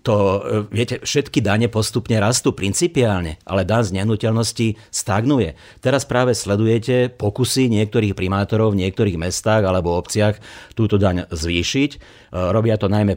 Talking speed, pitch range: 130 wpm, 95-110 Hz